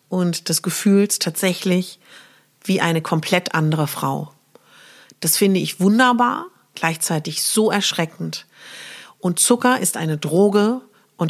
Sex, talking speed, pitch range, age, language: female, 115 wpm, 170-215 Hz, 40-59, German